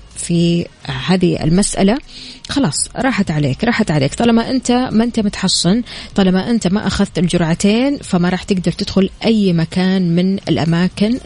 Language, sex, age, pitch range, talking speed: Arabic, female, 20-39, 175-230 Hz, 140 wpm